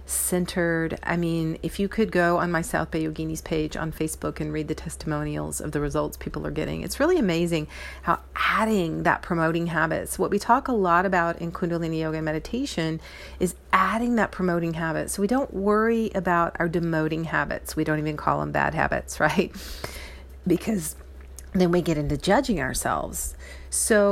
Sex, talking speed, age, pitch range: female, 180 wpm, 40-59, 150-190 Hz